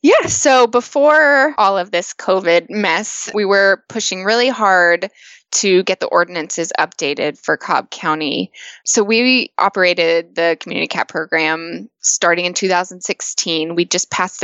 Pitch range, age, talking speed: 170-215 Hz, 20-39, 140 wpm